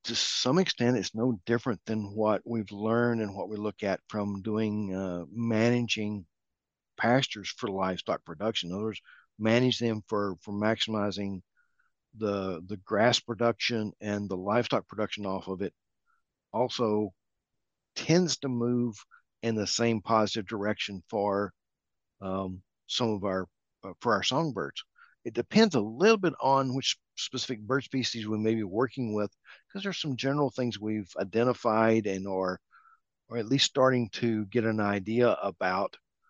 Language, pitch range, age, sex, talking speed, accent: English, 100-120 Hz, 50-69, male, 150 wpm, American